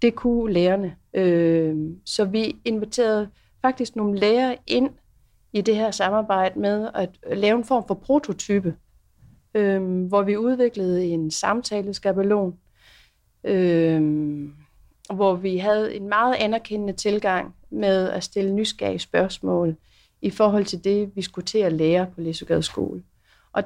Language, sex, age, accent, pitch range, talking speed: Danish, female, 30-49, native, 180-225 Hz, 130 wpm